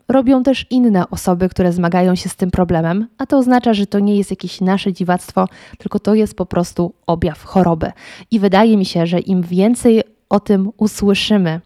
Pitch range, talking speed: 185-220 Hz, 190 wpm